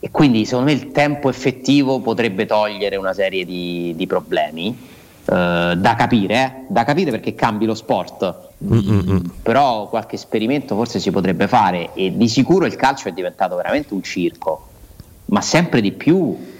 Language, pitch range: Italian, 105-140 Hz